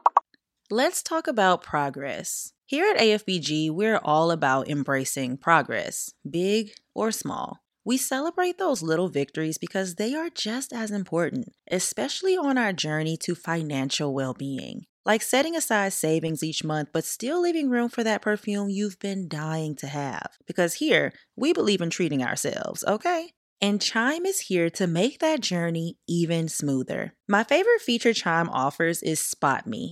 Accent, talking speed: American, 155 wpm